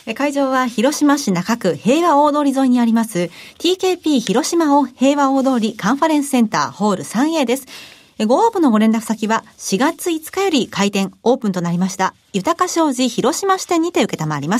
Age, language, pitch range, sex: 40-59, Japanese, 200-285 Hz, female